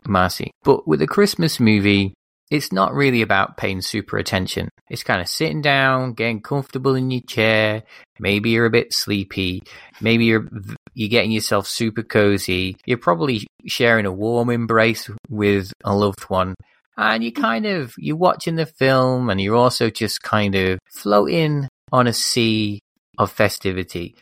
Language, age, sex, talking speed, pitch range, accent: English, 20-39, male, 160 wpm, 100-130 Hz, British